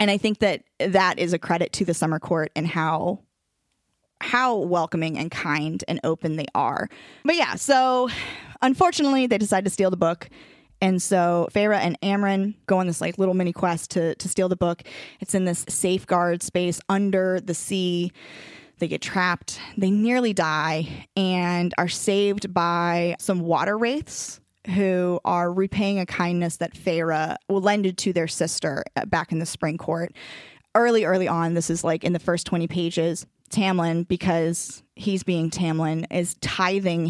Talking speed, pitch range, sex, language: 170 wpm, 165-190 Hz, female, English